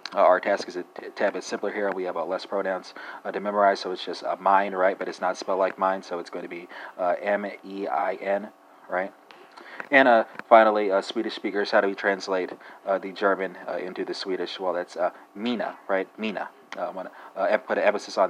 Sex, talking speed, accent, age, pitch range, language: male, 225 wpm, American, 30-49, 95-110 Hz, English